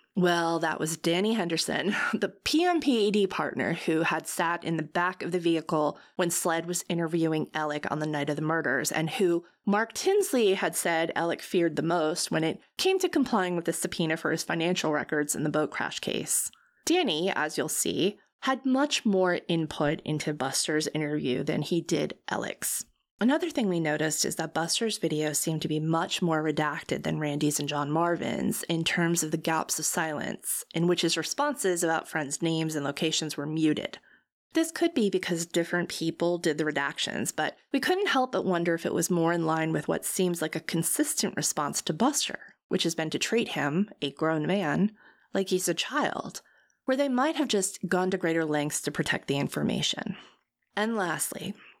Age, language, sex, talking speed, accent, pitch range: 20-39, English, female, 190 wpm, American, 155-200 Hz